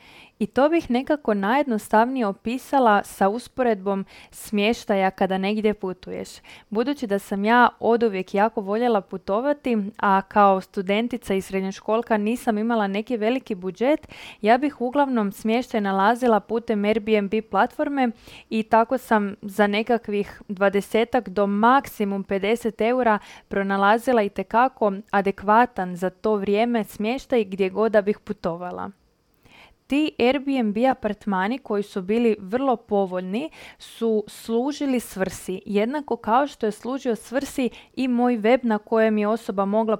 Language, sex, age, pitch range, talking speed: Croatian, female, 20-39, 200-240 Hz, 130 wpm